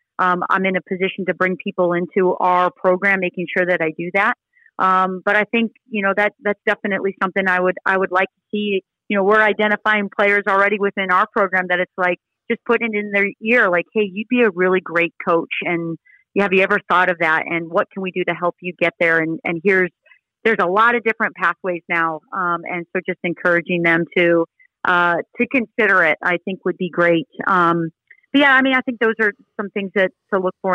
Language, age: English, 30-49